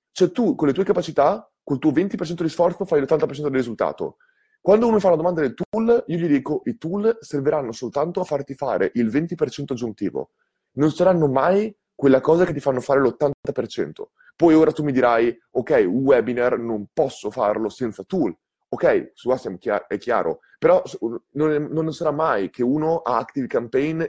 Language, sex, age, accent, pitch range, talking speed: Italian, male, 30-49, native, 130-180 Hz, 180 wpm